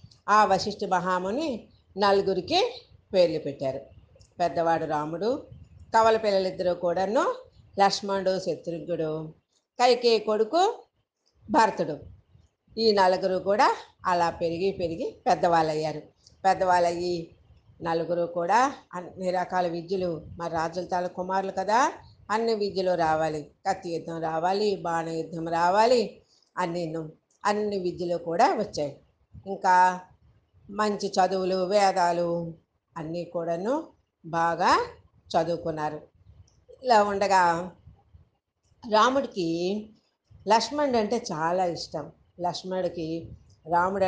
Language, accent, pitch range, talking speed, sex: Telugu, native, 170-205 Hz, 85 wpm, female